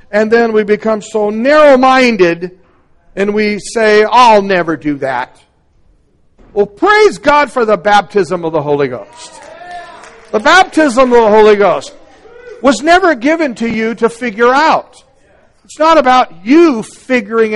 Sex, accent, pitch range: male, American, 185-240 Hz